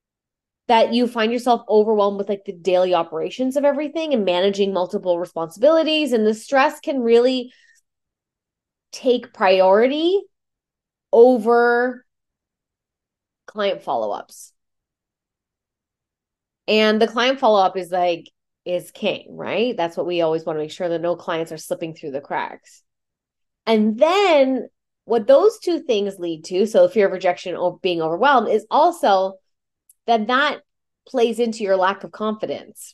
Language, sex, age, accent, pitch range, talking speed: English, female, 20-39, American, 185-245 Hz, 140 wpm